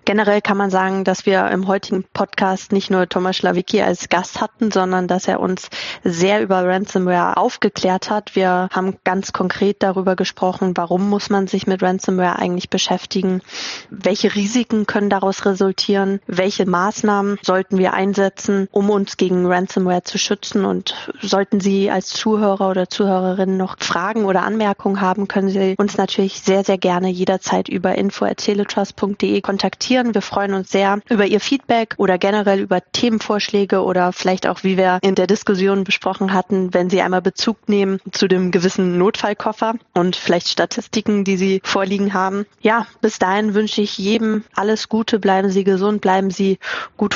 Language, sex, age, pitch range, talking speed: German, female, 20-39, 185-205 Hz, 165 wpm